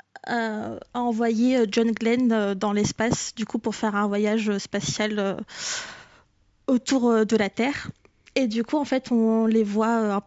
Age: 20-39